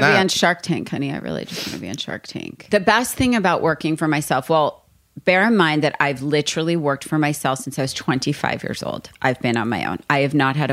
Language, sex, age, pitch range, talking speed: English, female, 30-49, 135-160 Hz, 265 wpm